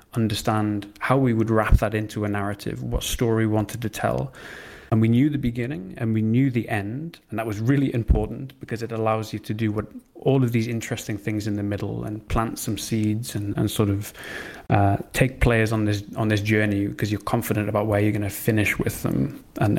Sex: male